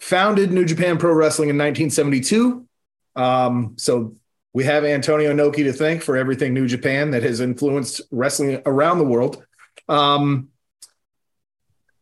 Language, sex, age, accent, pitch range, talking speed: English, male, 30-49, American, 125-160 Hz, 135 wpm